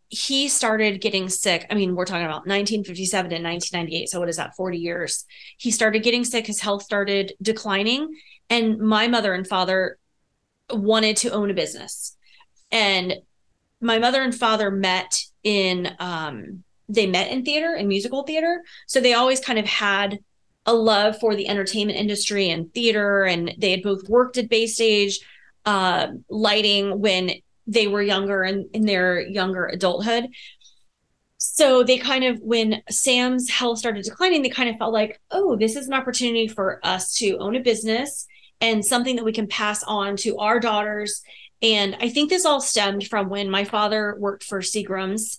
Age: 30-49